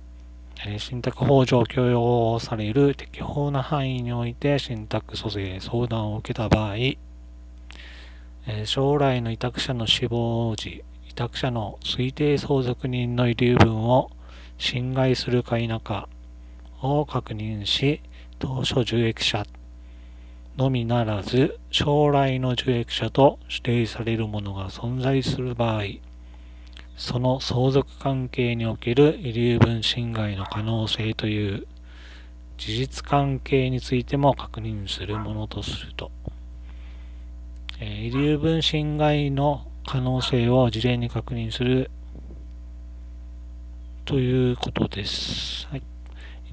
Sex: male